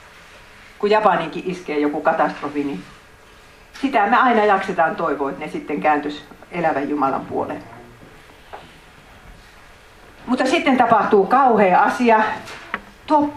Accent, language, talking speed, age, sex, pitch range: native, Finnish, 110 wpm, 50-69, female, 150-235 Hz